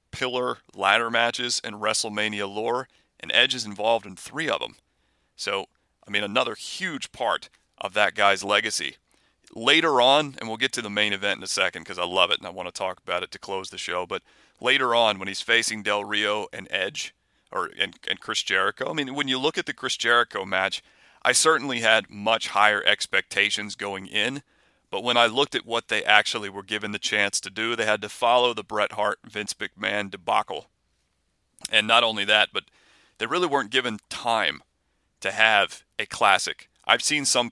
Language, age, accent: English, 40-59, American